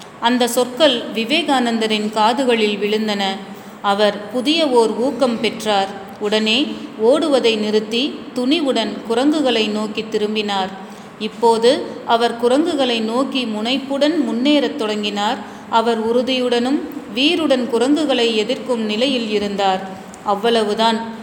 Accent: native